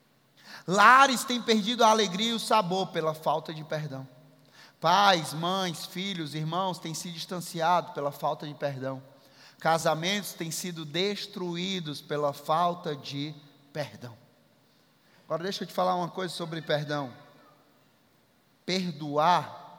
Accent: Brazilian